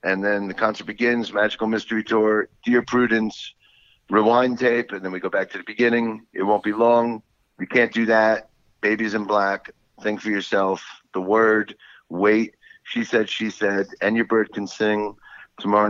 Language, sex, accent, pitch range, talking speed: English, male, American, 95-115 Hz, 175 wpm